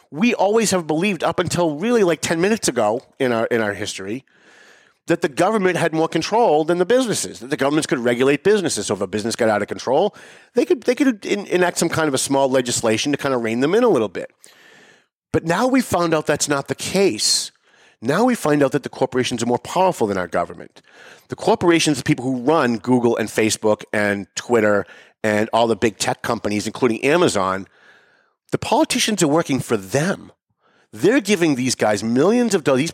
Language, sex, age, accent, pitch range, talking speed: English, male, 40-59, American, 125-185 Hz, 210 wpm